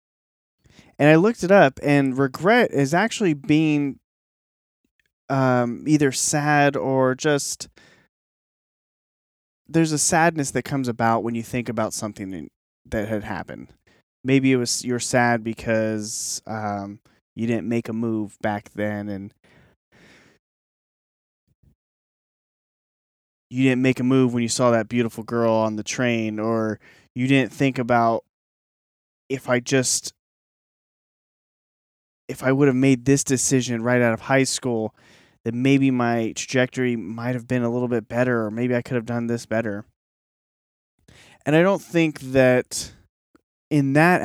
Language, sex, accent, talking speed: English, male, American, 140 wpm